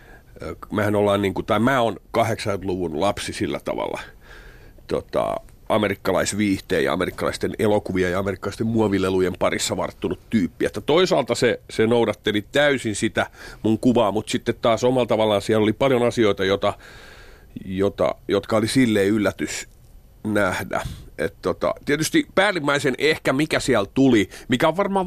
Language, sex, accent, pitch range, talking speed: Finnish, male, native, 105-140 Hz, 135 wpm